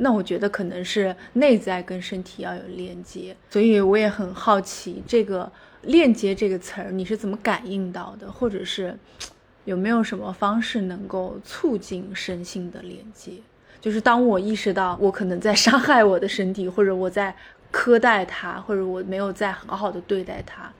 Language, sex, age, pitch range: Chinese, female, 20-39, 185-220 Hz